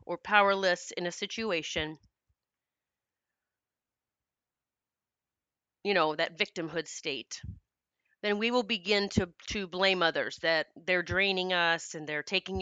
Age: 30-49